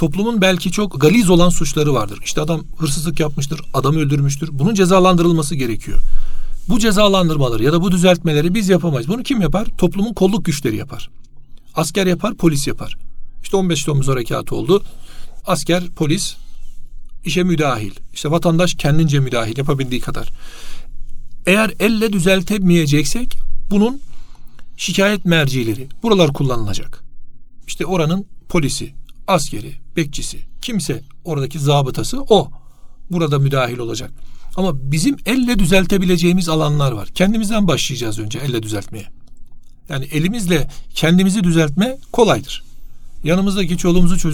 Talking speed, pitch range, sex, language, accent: 120 wpm, 135-185 Hz, male, Turkish, native